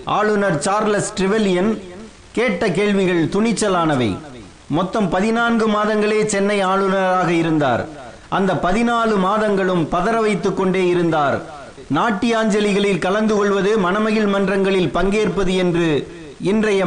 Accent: native